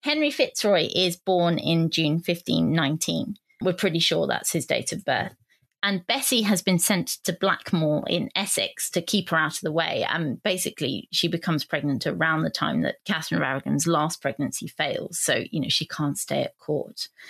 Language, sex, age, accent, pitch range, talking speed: English, female, 20-39, British, 165-225 Hz, 185 wpm